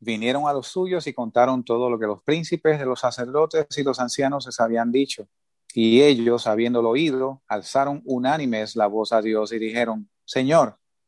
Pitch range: 120-140 Hz